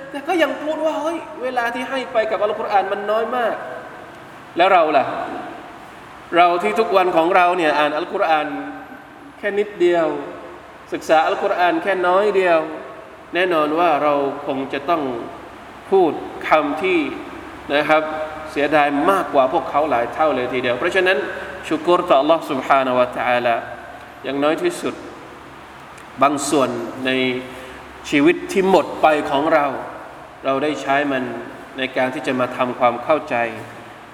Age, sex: 20-39, male